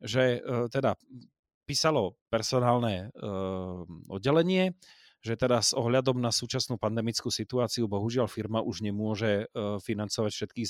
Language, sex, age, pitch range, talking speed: Slovak, male, 30-49, 105-135 Hz, 120 wpm